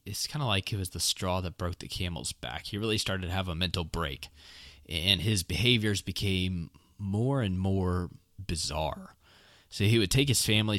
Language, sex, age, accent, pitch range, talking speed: English, male, 20-39, American, 85-105 Hz, 195 wpm